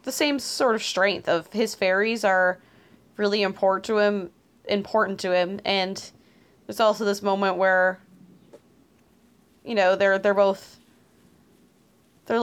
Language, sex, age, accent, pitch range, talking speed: English, female, 20-39, American, 190-230 Hz, 135 wpm